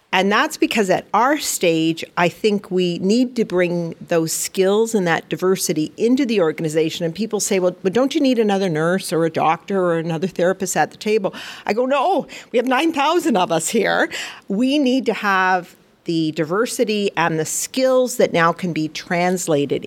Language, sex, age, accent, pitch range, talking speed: English, female, 50-69, American, 165-210 Hz, 185 wpm